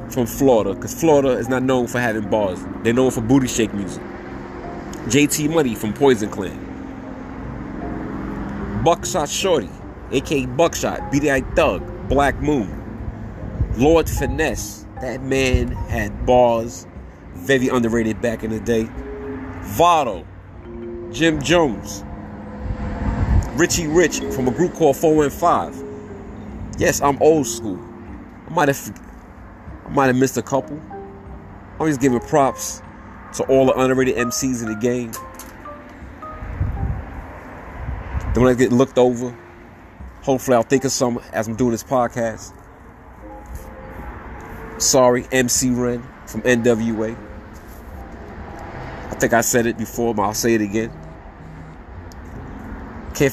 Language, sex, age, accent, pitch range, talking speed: English, male, 30-49, American, 100-130 Hz, 125 wpm